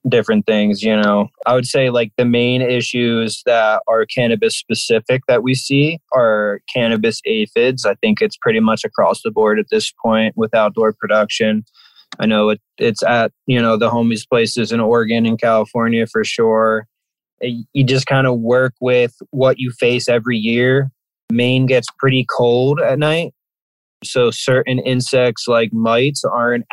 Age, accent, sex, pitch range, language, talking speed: 20-39, American, male, 110-130 Hz, English, 170 wpm